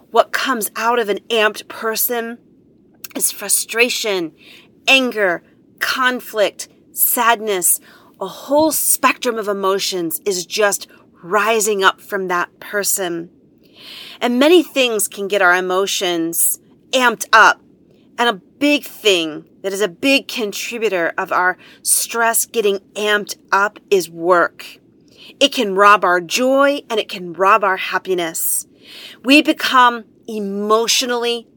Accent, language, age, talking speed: American, English, 40-59, 120 wpm